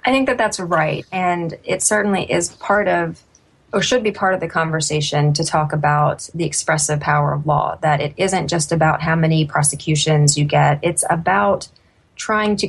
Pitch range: 150-185 Hz